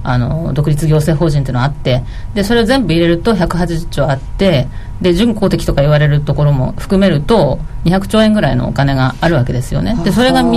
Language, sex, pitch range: Japanese, female, 130-190 Hz